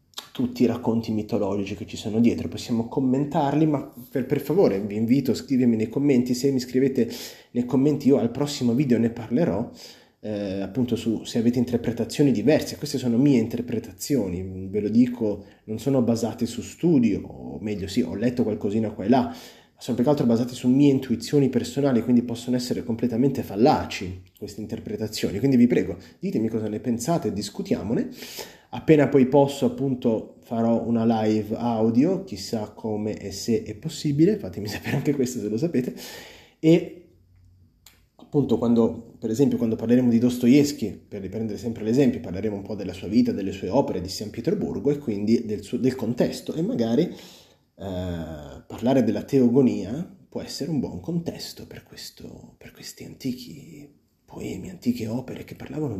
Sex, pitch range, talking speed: male, 105-130 Hz, 165 wpm